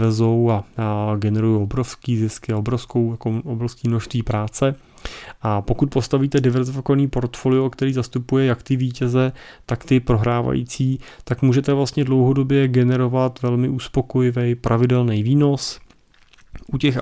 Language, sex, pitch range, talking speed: Czech, male, 115-135 Hz, 115 wpm